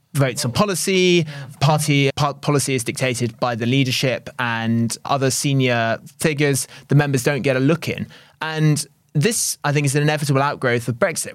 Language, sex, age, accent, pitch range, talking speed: English, male, 20-39, British, 130-150 Hz, 170 wpm